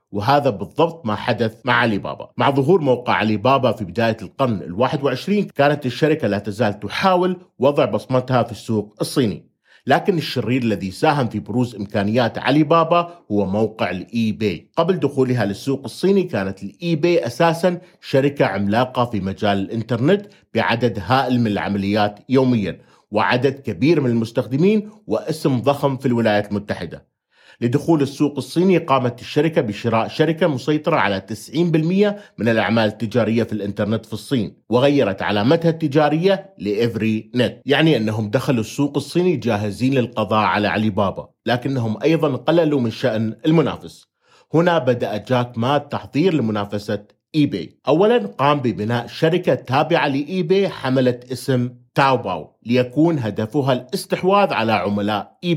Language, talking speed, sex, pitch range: Arabic, 140 wpm, male, 110-155 Hz